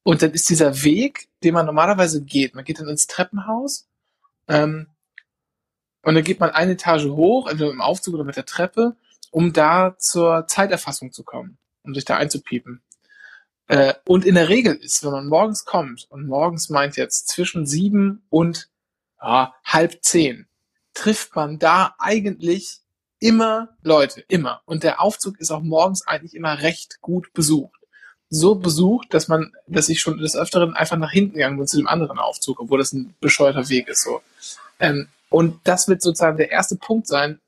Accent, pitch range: German, 150-185 Hz